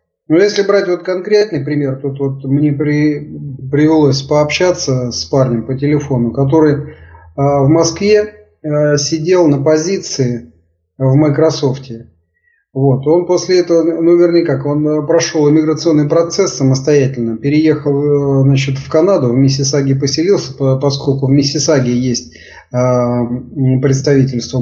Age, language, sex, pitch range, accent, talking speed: 30-49, Russian, male, 135-165 Hz, native, 130 wpm